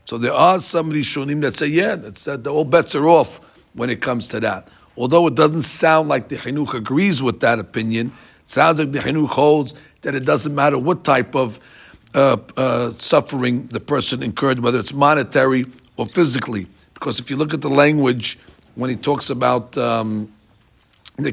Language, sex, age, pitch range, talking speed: English, male, 50-69, 125-155 Hz, 185 wpm